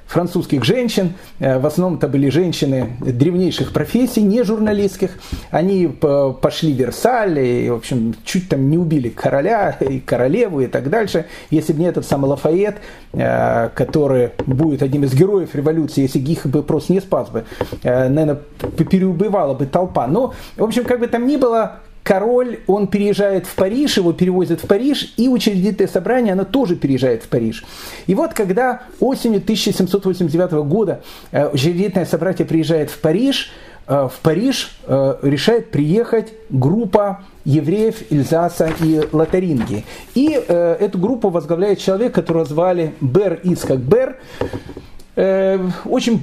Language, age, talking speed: Russian, 40-59, 140 wpm